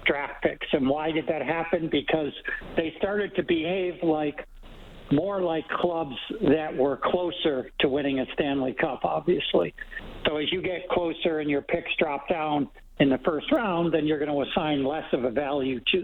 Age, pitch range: 60-79, 135-165 Hz